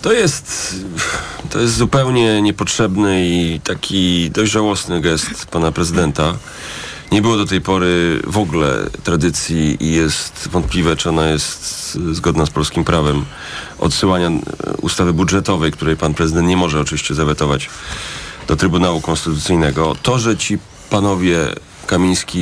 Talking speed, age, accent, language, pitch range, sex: 130 wpm, 40-59, native, Polish, 80-95 Hz, male